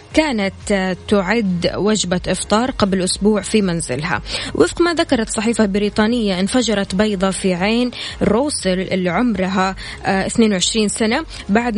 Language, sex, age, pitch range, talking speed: Arabic, female, 20-39, 190-225 Hz, 115 wpm